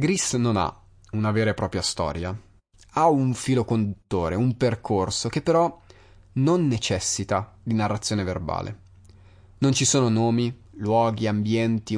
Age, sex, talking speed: 30-49, male, 135 wpm